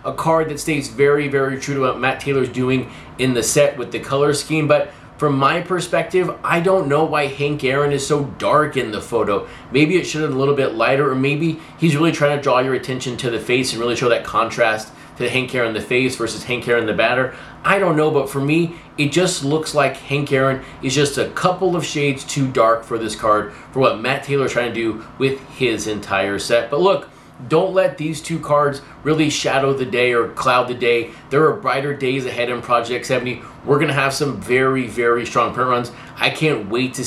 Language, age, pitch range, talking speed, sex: English, 30-49, 125-150 Hz, 230 wpm, male